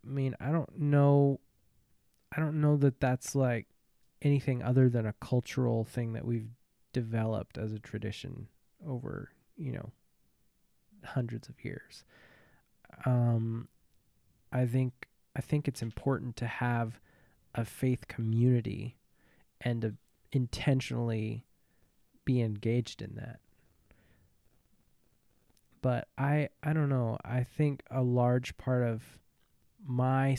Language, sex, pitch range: English, male, 115-135 Hz